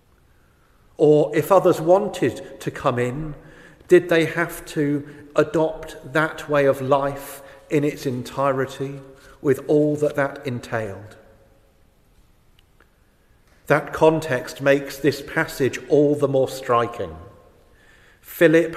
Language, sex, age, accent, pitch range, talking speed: English, male, 40-59, British, 125-150 Hz, 110 wpm